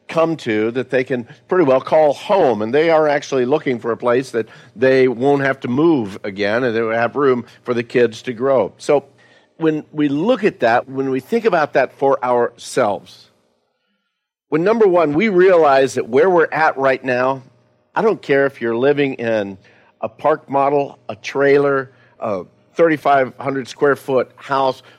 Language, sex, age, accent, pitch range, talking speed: English, male, 50-69, American, 115-150 Hz, 180 wpm